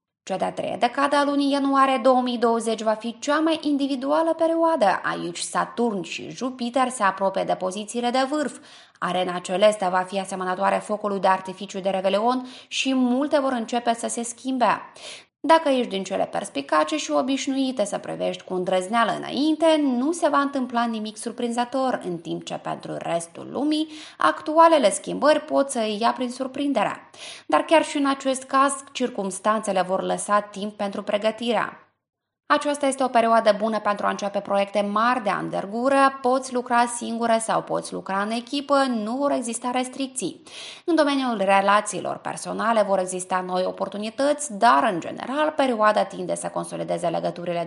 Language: Romanian